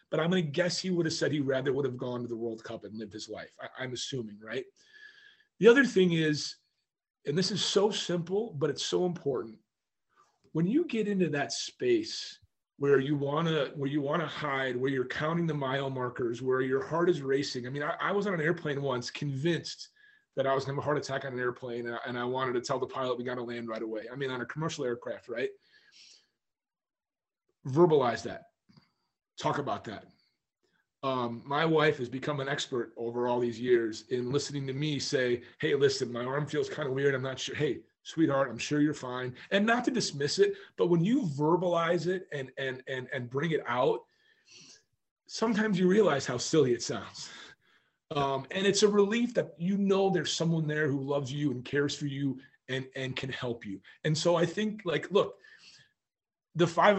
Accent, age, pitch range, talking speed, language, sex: American, 30-49, 130-180 Hz, 210 wpm, English, male